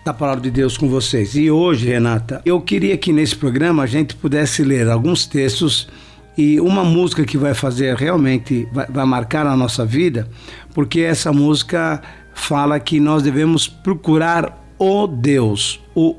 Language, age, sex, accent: Portuguese, 60-79, male, Brazilian